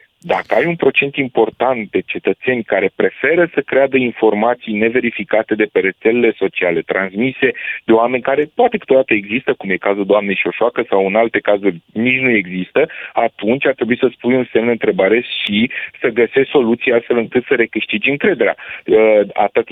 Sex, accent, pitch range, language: male, native, 100-120 Hz, Romanian